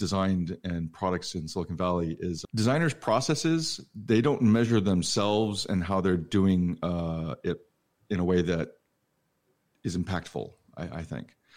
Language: English